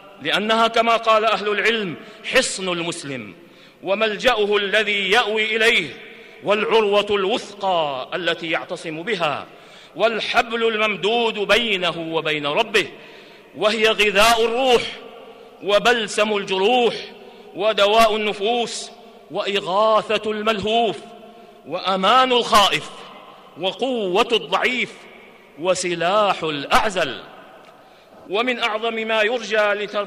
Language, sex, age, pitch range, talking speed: Arabic, male, 50-69, 200-230 Hz, 80 wpm